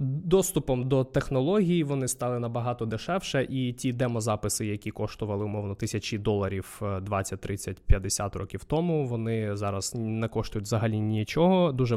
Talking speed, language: 125 wpm, Ukrainian